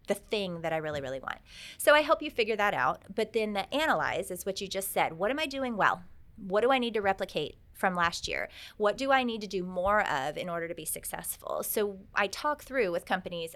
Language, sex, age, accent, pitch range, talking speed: English, female, 30-49, American, 175-225 Hz, 250 wpm